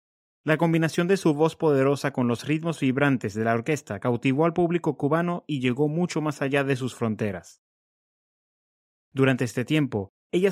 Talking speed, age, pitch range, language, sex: 165 wpm, 30-49, 115-155 Hz, English, male